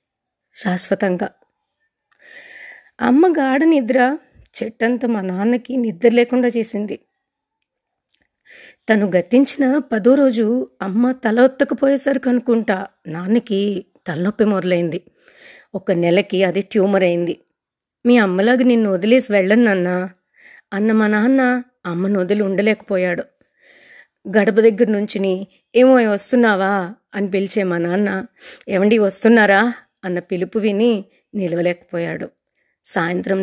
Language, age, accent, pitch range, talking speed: Telugu, 30-49, native, 185-235 Hz, 95 wpm